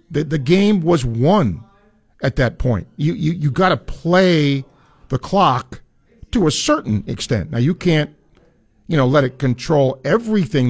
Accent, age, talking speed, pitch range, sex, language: American, 50-69, 165 wpm, 115-155 Hz, male, English